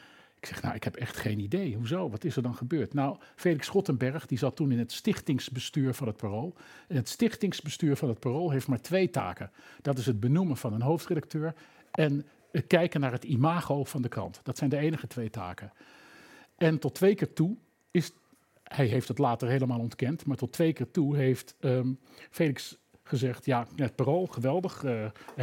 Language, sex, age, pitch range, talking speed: Dutch, male, 50-69, 125-170 Hz, 200 wpm